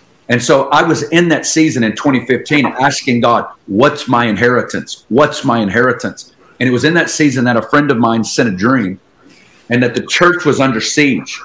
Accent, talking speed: American, 200 wpm